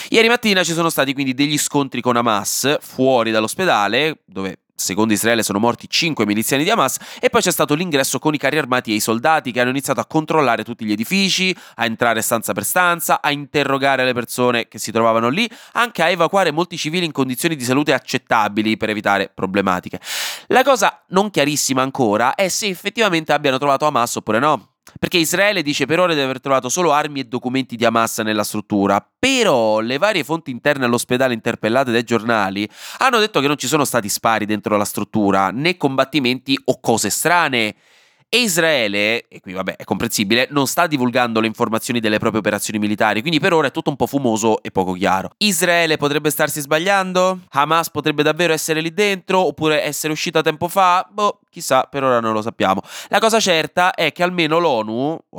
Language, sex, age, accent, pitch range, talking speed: Italian, male, 20-39, native, 115-165 Hz, 195 wpm